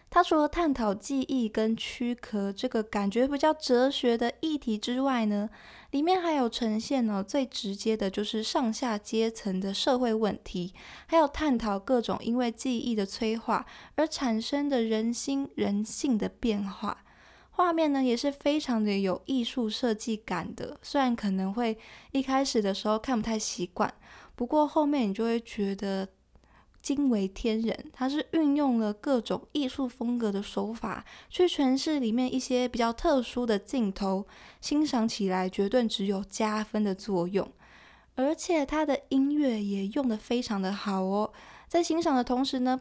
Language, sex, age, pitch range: Chinese, female, 20-39, 210-270 Hz